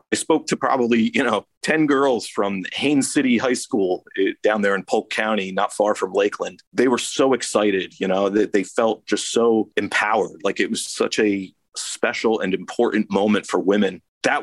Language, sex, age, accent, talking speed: English, male, 40-59, American, 190 wpm